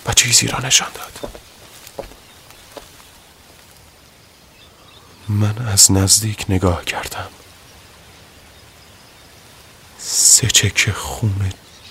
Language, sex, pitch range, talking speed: Persian, male, 90-105 Hz, 60 wpm